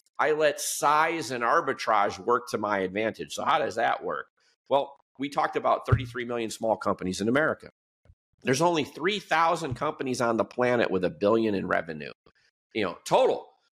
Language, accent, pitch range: English, American, 115-165 Hz